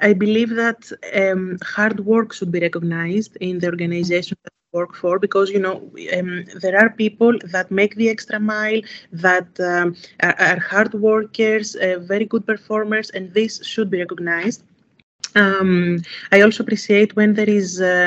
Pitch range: 185-215 Hz